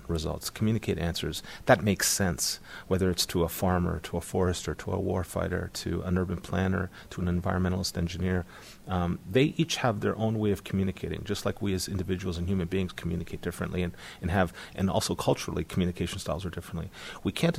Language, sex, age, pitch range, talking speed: English, male, 40-59, 85-105 Hz, 190 wpm